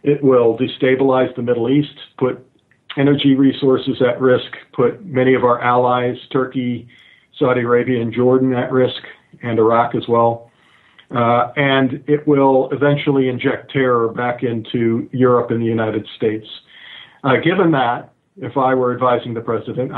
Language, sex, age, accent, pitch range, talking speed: English, male, 50-69, American, 120-135 Hz, 150 wpm